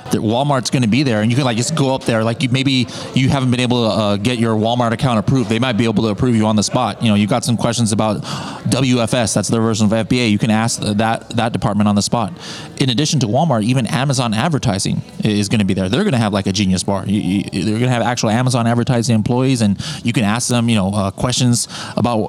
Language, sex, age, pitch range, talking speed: English, male, 30-49, 115-145 Hz, 265 wpm